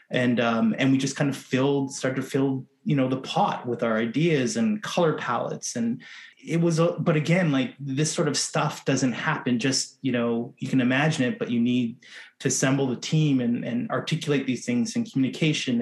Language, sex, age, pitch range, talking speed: English, male, 20-39, 130-165 Hz, 205 wpm